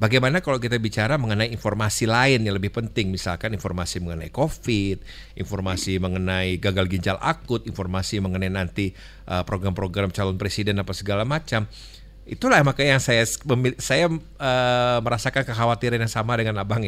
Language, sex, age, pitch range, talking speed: Indonesian, male, 50-69, 95-125 Hz, 140 wpm